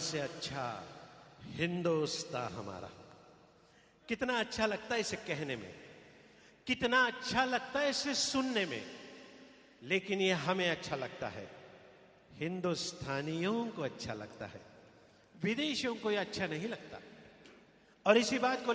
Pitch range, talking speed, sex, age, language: 175-245 Hz, 105 wpm, male, 50-69, Kannada